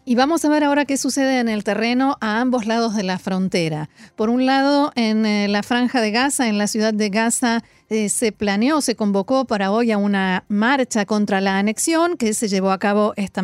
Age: 40-59